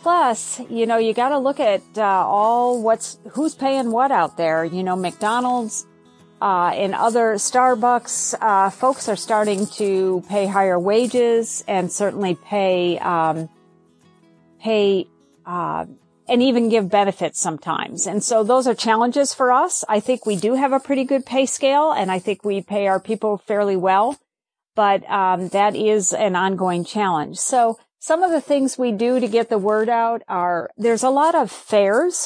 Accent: American